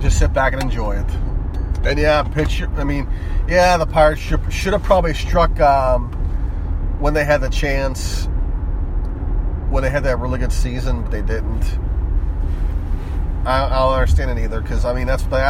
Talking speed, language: 180 wpm, English